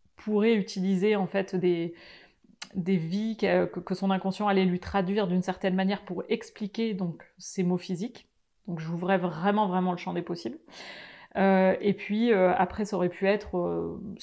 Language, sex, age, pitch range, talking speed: French, female, 30-49, 185-215 Hz, 175 wpm